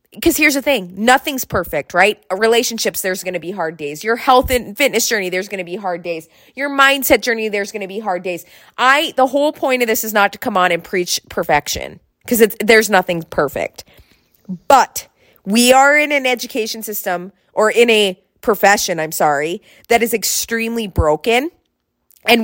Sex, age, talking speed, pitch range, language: female, 20-39, 190 wpm, 190-250 Hz, English